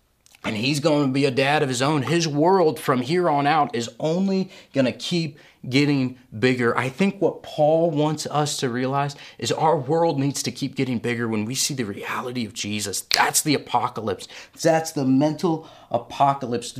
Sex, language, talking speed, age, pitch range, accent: male, English, 190 wpm, 30-49, 120-150 Hz, American